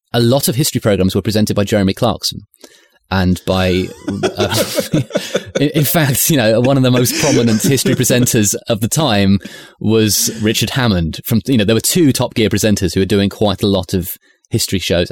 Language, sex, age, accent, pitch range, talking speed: English, male, 30-49, British, 95-125 Hz, 195 wpm